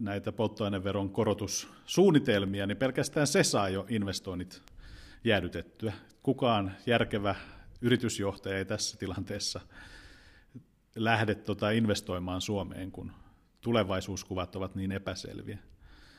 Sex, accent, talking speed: male, native, 95 wpm